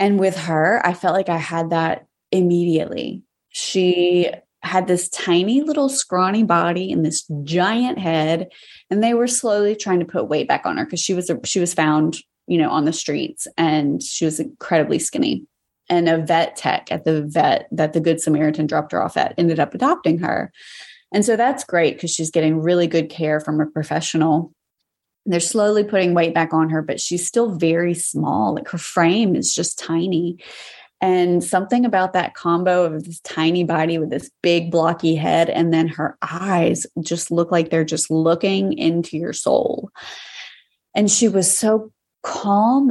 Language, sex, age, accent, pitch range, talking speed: English, female, 20-39, American, 160-190 Hz, 185 wpm